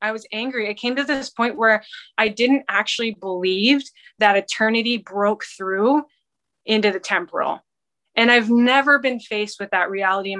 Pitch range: 205-265 Hz